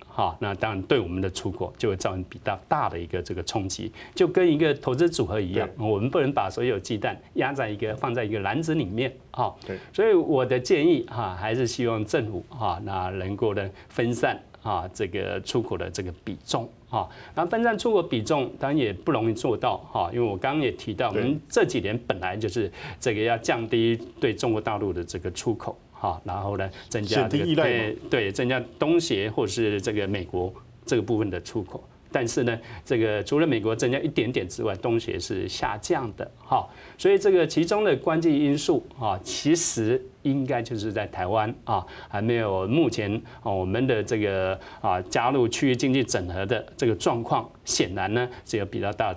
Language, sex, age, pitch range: Chinese, male, 30-49, 100-145 Hz